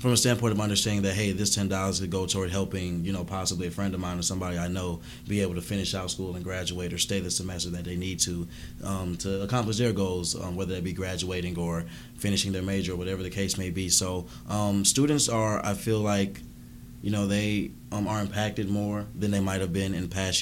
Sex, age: male, 20-39